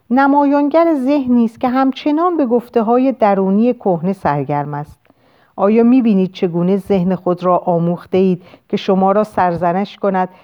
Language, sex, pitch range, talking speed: Persian, female, 175-255 Hz, 140 wpm